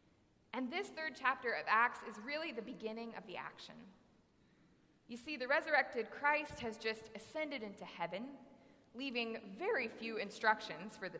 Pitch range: 205-255 Hz